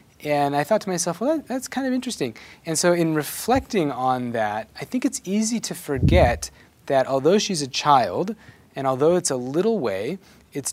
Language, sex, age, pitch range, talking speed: English, male, 30-49, 125-165 Hz, 190 wpm